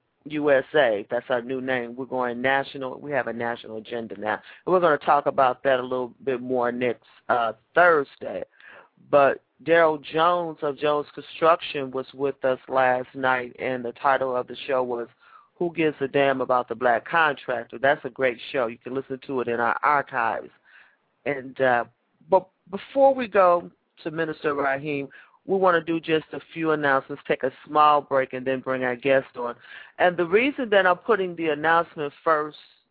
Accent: American